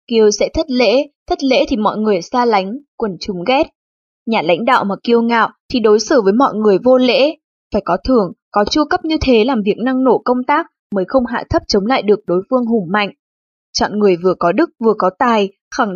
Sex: female